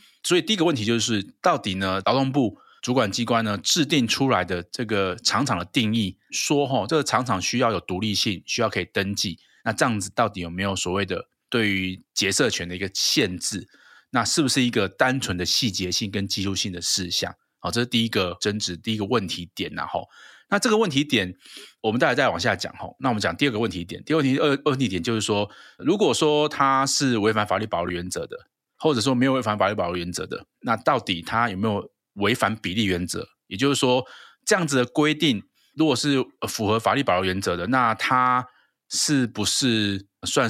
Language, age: Chinese, 20-39